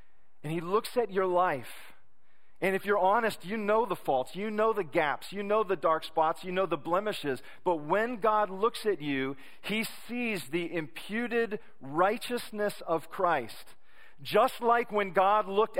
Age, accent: 40-59, American